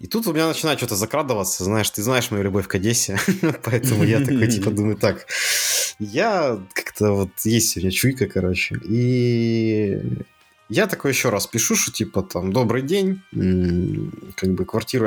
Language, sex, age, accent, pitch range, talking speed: Ukrainian, male, 20-39, native, 95-130 Hz, 165 wpm